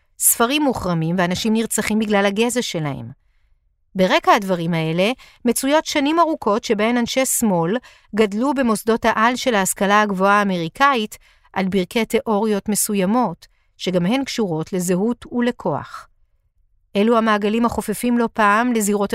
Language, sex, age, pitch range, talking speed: Hebrew, female, 50-69, 185-240 Hz, 120 wpm